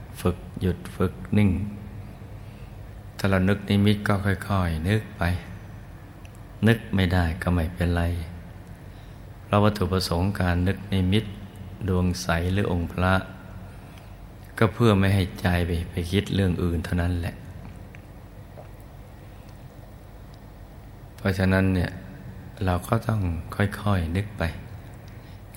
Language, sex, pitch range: Thai, male, 90-105 Hz